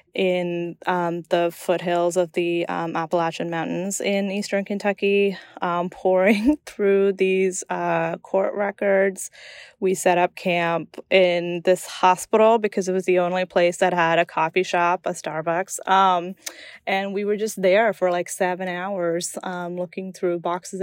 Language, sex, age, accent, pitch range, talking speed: English, female, 20-39, American, 170-195 Hz, 155 wpm